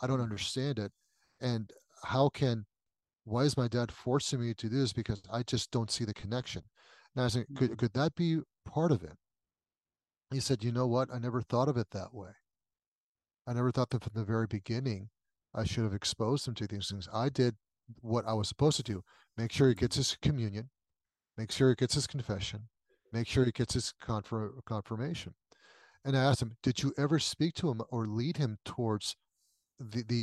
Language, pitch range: English, 110-135 Hz